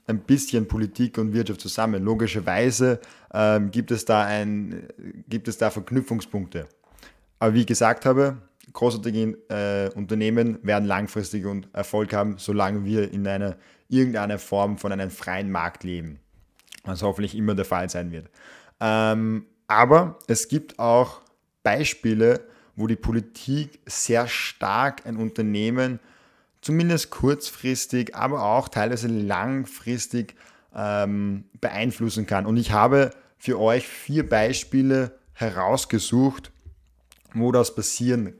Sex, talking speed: male, 125 wpm